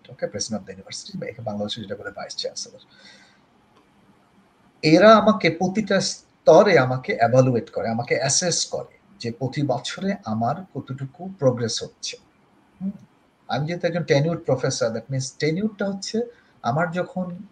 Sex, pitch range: male, 130-185 Hz